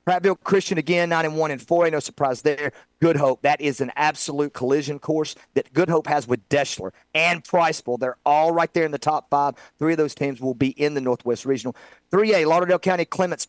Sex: male